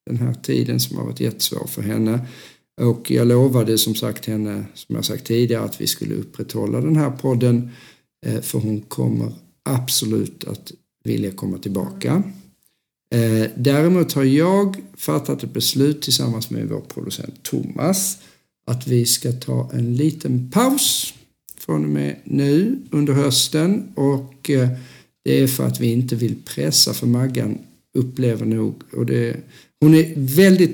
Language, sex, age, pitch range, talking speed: Swedish, male, 50-69, 110-135 Hz, 150 wpm